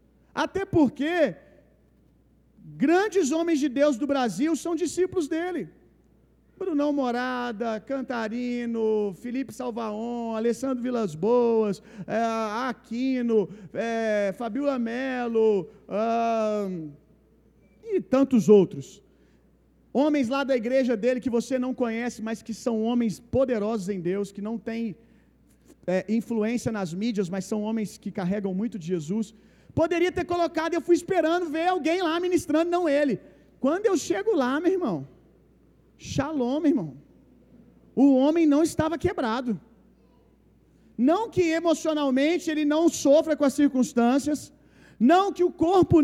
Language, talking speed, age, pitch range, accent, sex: Gujarati, 130 wpm, 40-59, 230-325 Hz, Brazilian, male